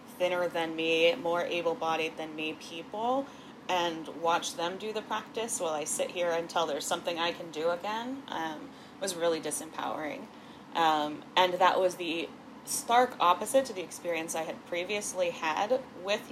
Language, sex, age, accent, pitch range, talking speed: English, female, 20-39, American, 160-245 Hz, 160 wpm